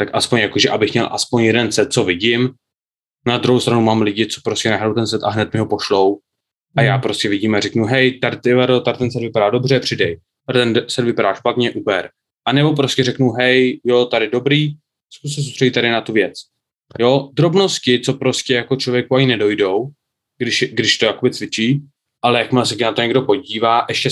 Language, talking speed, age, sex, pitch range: Czech, 200 wpm, 20-39, male, 110-130 Hz